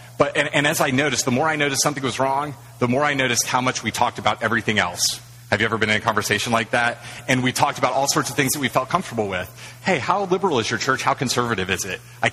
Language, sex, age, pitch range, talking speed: English, male, 30-49, 110-135 Hz, 275 wpm